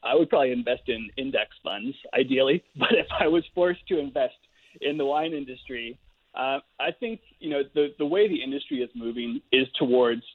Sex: male